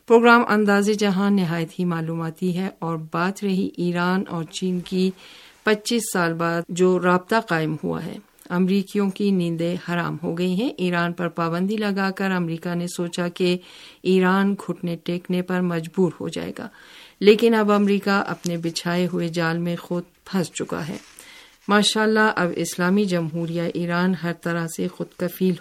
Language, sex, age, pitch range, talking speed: Urdu, female, 50-69, 170-200 Hz, 160 wpm